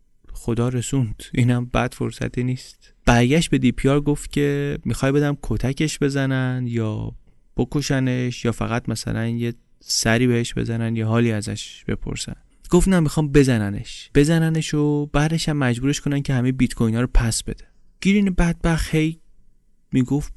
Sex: male